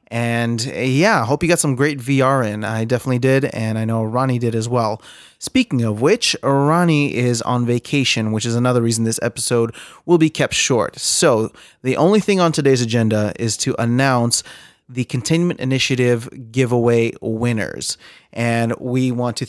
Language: English